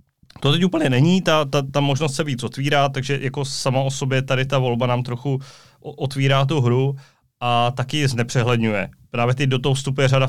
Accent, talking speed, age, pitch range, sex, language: native, 200 wpm, 30-49, 115-135 Hz, male, Czech